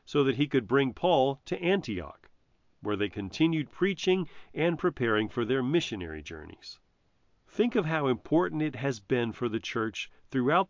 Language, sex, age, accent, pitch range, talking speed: English, male, 40-59, American, 105-155 Hz, 165 wpm